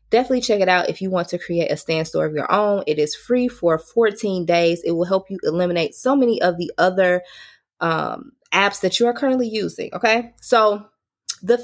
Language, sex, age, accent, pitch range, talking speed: English, female, 20-39, American, 175-245 Hz, 210 wpm